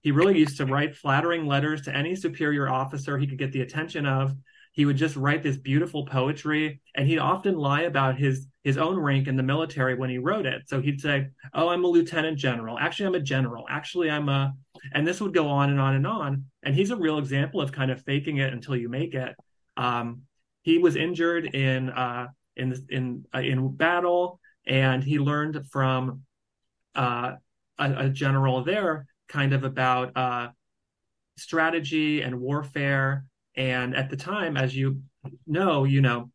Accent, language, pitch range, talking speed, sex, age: American, English, 130-150 Hz, 190 wpm, male, 30-49